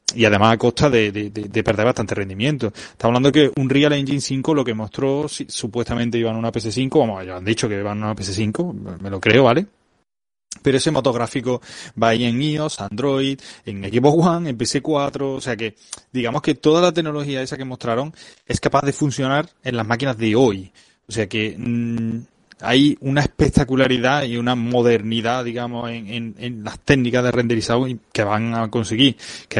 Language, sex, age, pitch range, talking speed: Spanish, male, 20-39, 115-135 Hz, 190 wpm